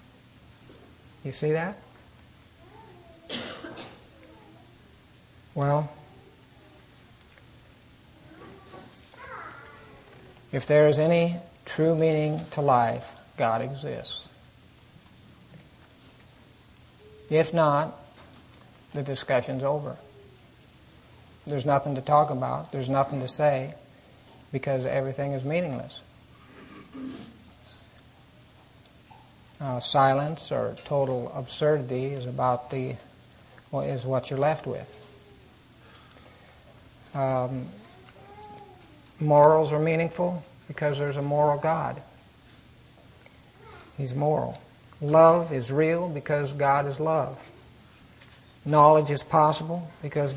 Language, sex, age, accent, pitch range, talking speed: English, male, 50-69, American, 130-150 Hz, 80 wpm